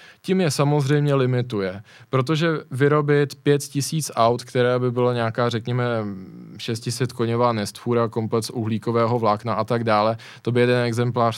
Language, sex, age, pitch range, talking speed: Czech, male, 20-39, 115-125 Hz, 150 wpm